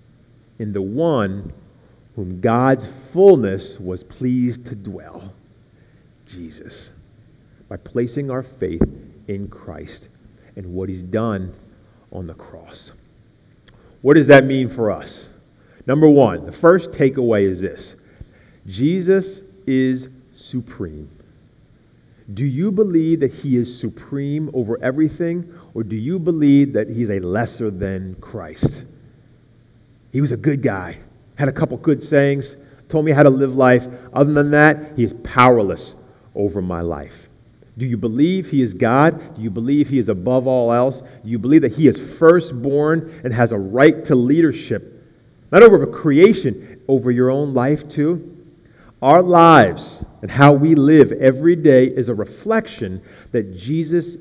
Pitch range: 110-145 Hz